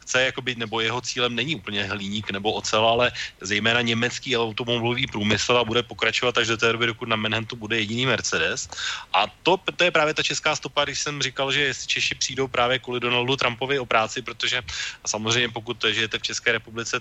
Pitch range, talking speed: 110-125 Hz, 200 wpm